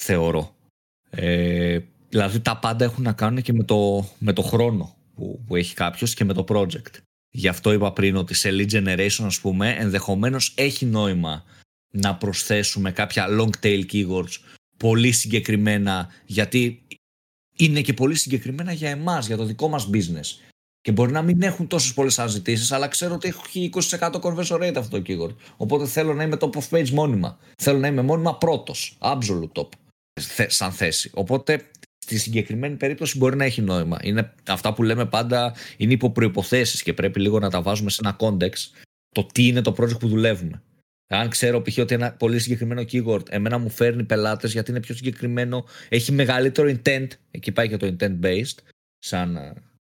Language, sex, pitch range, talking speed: Greek, male, 100-130 Hz, 175 wpm